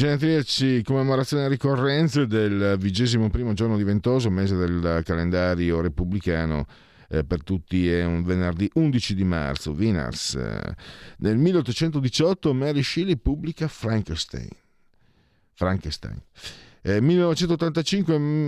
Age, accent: 50-69, native